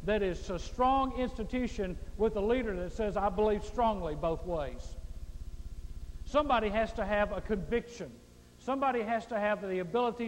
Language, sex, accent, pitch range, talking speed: English, male, American, 180-235 Hz, 160 wpm